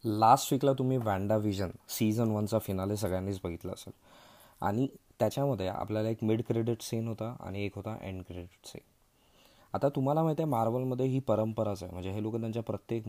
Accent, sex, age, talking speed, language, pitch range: native, male, 20-39, 175 wpm, Marathi, 100-120 Hz